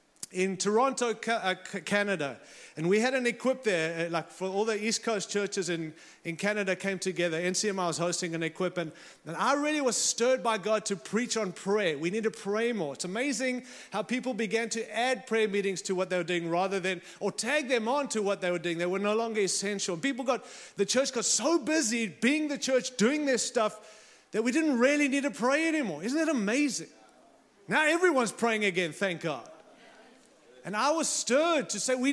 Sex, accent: male, German